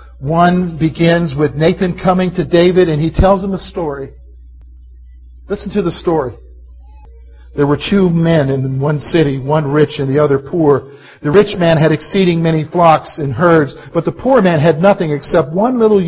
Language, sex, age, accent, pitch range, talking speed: English, male, 50-69, American, 155-210 Hz, 180 wpm